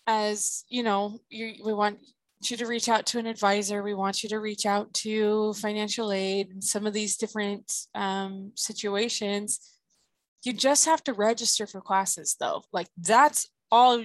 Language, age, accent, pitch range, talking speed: English, 20-39, American, 200-230 Hz, 170 wpm